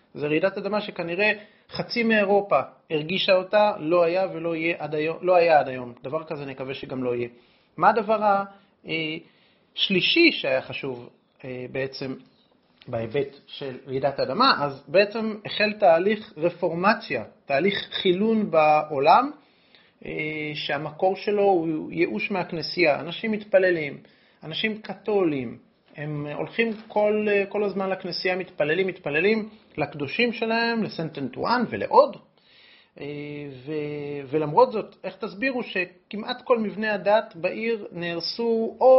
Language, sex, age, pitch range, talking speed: Hebrew, male, 30-49, 150-210 Hz, 115 wpm